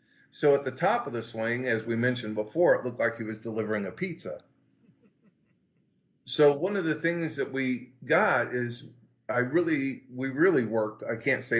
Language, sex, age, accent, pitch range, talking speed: English, male, 40-59, American, 115-135 Hz, 185 wpm